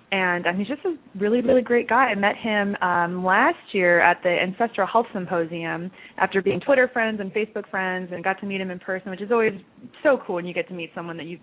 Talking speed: 245 wpm